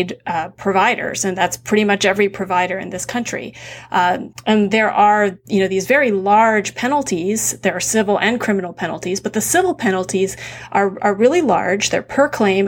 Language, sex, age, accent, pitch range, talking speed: English, female, 30-49, American, 190-225 Hz, 180 wpm